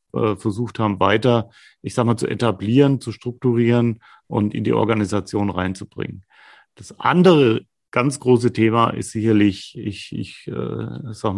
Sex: male